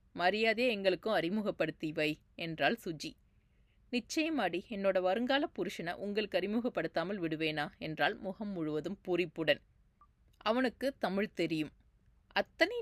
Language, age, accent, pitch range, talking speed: Tamil, 30-49, native, 160-215 Hz, 100 wpm